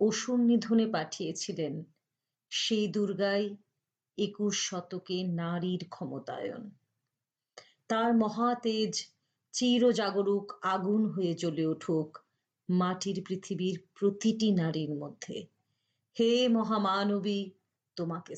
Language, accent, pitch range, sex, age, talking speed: Bengali, native, 180-245 Hz, female, 30-49, 60 wpm